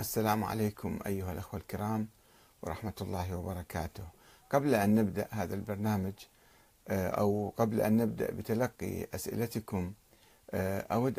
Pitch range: 100-120 Hz